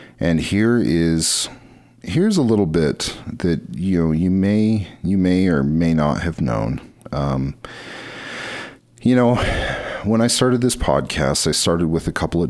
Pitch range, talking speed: 75-95 Hz, 160 wpm